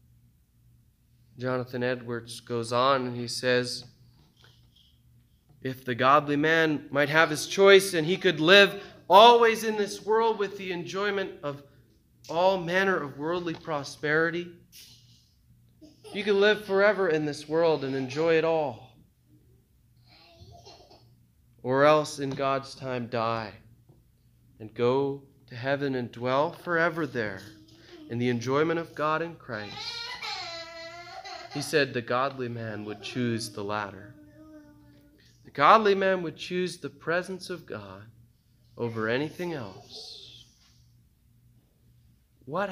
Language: English